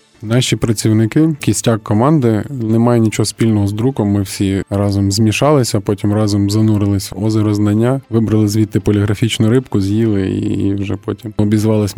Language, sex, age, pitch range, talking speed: Ukrainian, male, 20-39, 100-120 Hz, 140 wpm